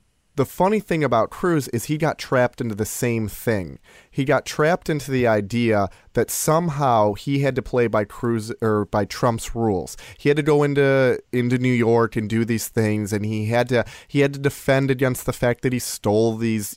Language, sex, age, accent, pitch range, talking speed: English, male, 30-49, American, 105-135 Hz, 210 wpm